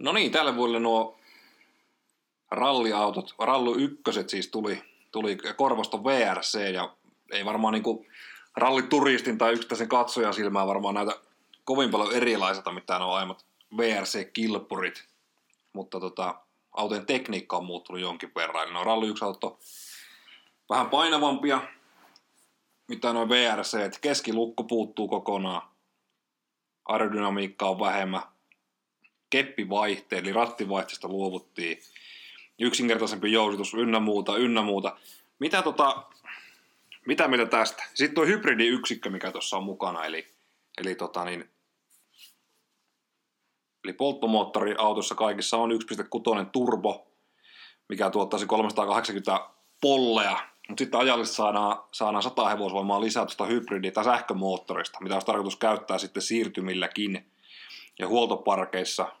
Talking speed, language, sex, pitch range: 115 wpm, Finnish, male, 100-115 Hz